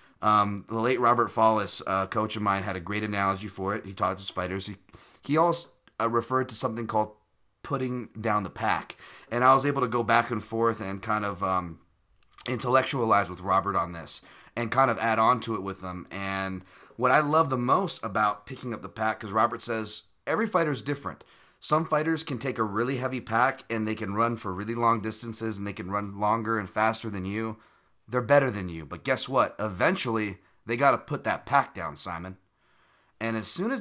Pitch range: 105-130 Hz